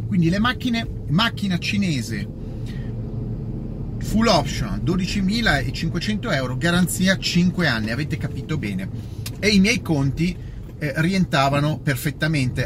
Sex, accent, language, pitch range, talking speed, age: male, native, Italian, 115-170 Hz, 105 wpm, 30-49